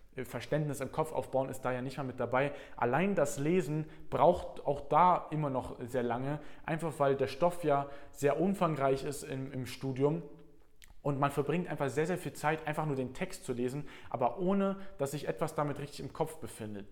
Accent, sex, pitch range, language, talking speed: German, male, 130-150 Hz, German, 200 wpm